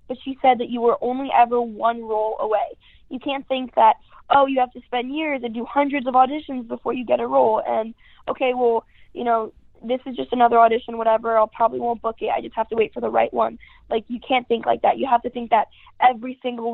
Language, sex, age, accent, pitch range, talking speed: English, female, 10-29, American, 225-265 Hz, 250 wpm